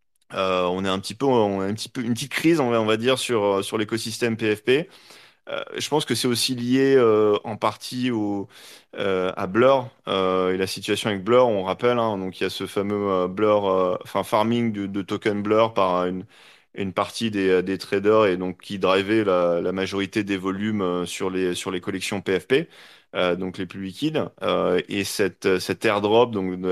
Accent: French